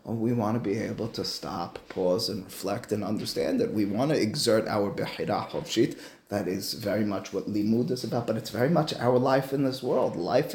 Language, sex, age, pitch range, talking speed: English, male, 30-49, 100-120 Hz, 215 wpm